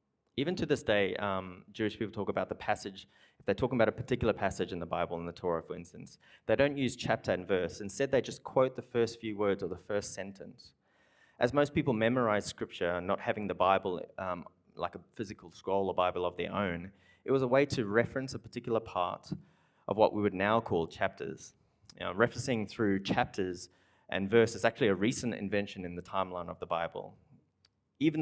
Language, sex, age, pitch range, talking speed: English, male, 30-49, 95-115 Hz, 210 wpm